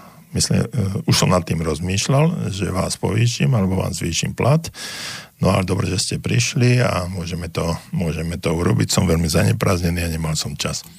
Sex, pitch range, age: male, 85-115 Hz, 50-69